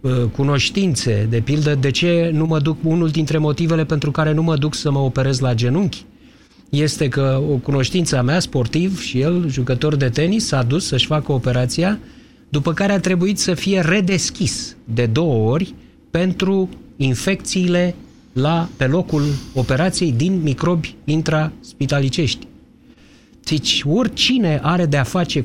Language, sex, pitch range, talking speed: Romanian, male, 125-165 Hz, 145 wpm